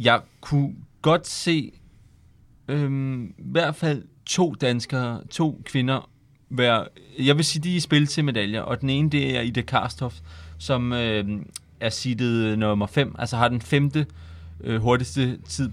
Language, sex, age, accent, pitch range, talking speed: Danish, male, 30-49, native, 110-140 Hz, 160 wpm